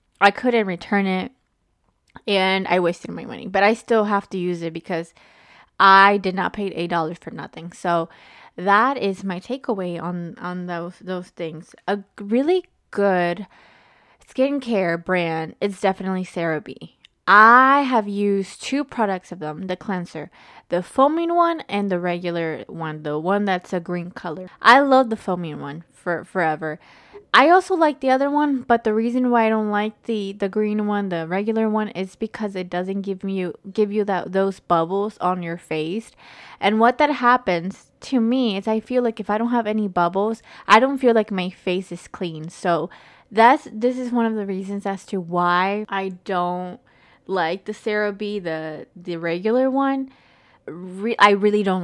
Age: 20-39